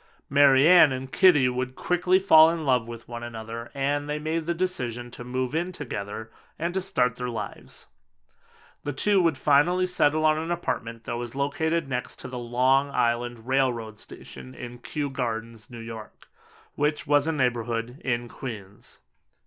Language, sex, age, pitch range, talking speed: English, male, 30-49, 125-160 Hz, 165 wpm